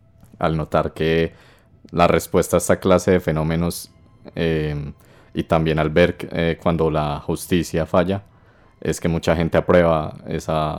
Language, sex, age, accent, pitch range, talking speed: Spanish, male, 20-39, Colombian, 80-90 Hz, 145 wpm